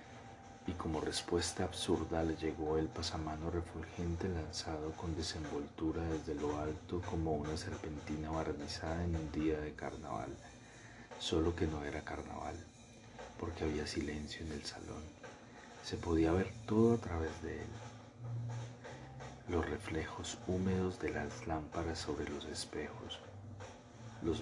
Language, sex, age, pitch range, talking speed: Spanish, male, 40-59, 80-115 Hz, 130 wpm